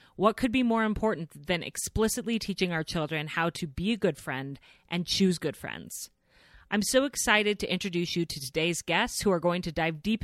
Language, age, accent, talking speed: English, 30-49, American, 205 wpm